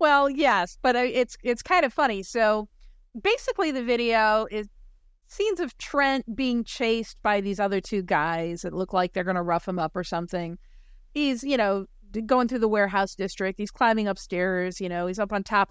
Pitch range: 185-250 Hz